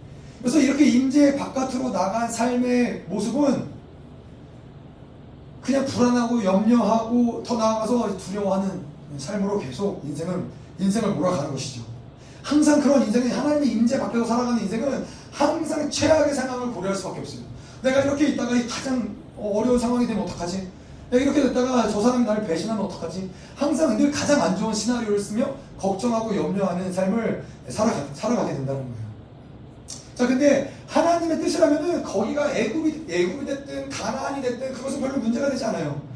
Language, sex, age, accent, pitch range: Korean, male, 30-49, native, 160-265 Hz